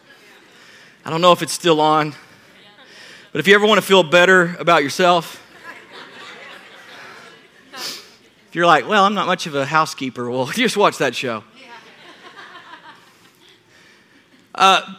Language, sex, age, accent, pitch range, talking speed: English, male, 40-59, American, 180-225 Hz, 130 wpm